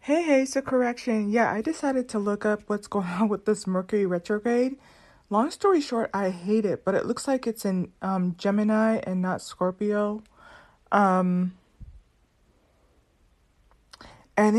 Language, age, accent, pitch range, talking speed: English, 30-49, American, 185-230 Hz, 150 wpm